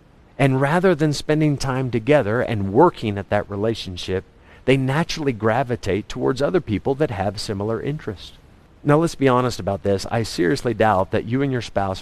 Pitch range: 100-135 Hz